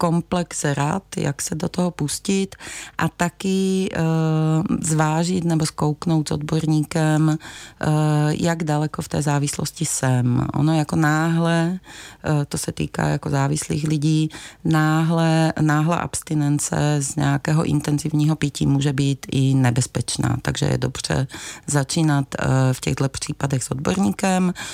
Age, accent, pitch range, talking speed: 30-49, native, 135-155 Hz, 120 wpm